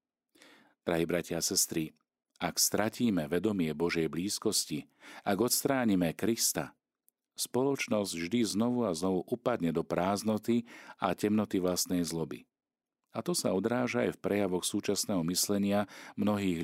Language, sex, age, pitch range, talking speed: Slovak, male, 40-59, 85-110 Hz, 125 wpm